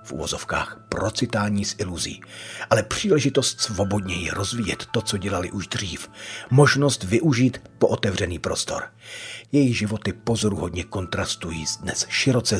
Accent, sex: native, male